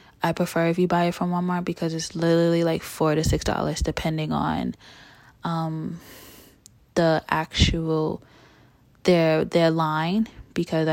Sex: female